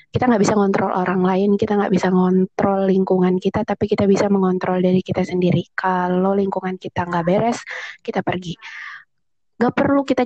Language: Indonesian